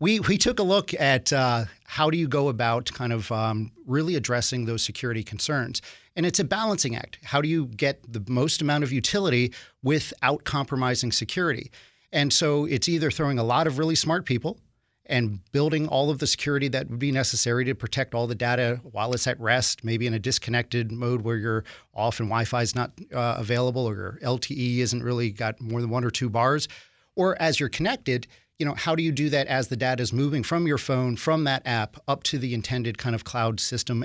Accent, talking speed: American, 215 wpm